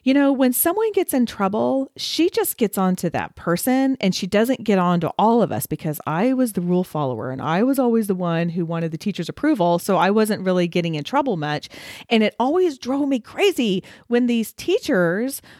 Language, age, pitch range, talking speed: English, 40-59, 170-250 Hz, 220 wpm